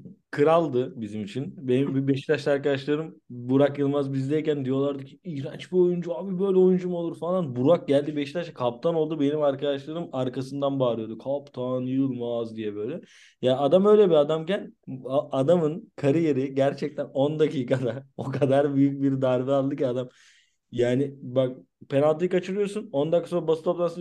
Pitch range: 125-155 Hz